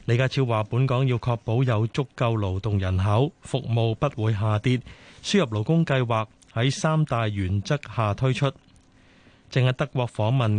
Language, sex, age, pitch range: Chinese, male, 30-49, 110-140 Hz